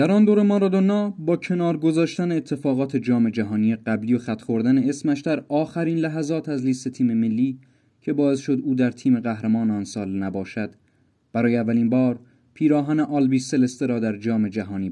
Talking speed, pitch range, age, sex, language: 165 wpm, 110-145 Hz, 30-49, male, Persian